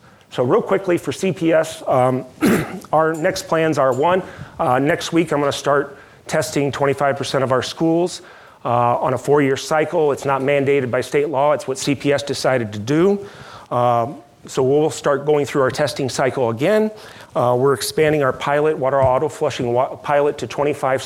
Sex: male